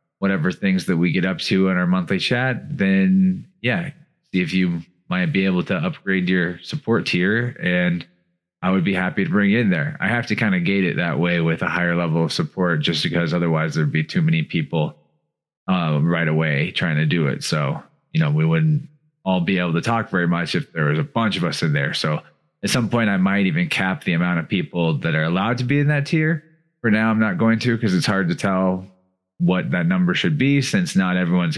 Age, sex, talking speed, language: 20-39, male, 235 wpm, English